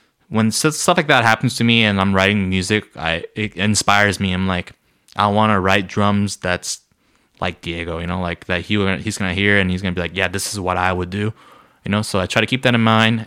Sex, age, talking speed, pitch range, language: male, 20-39, 250 wpm, 95-110 Hz, English